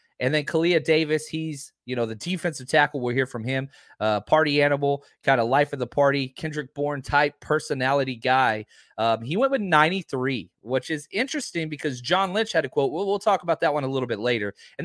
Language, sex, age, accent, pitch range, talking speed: English, male, 30-49, American, 130-195 Hz, 215 wpm